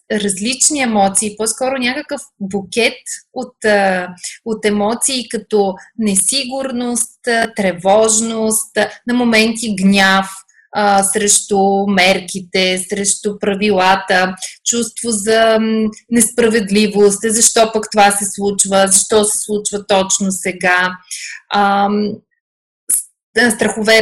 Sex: female